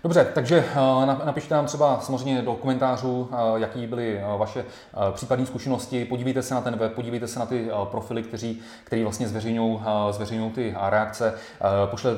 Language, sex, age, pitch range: Czech, male, 30-49, 110-125 Hz